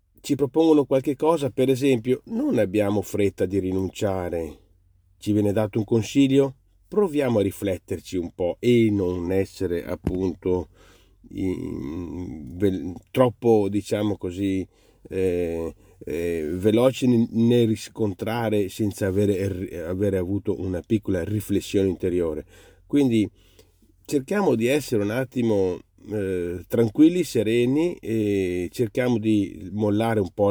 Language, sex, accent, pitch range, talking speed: Italian, male, native, 95-125 Hz, 105 wpm